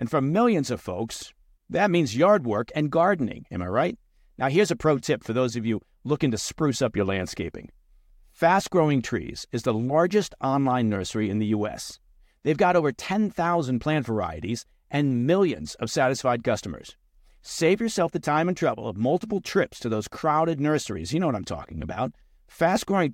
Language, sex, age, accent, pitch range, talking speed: English, male, 50-69, American, 115-165 Hz, 180 wpm